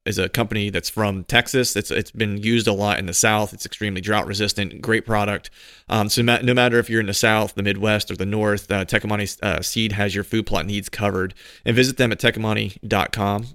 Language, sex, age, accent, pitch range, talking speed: English, male, 30-49, American, 100-110 Hz, 220 wpm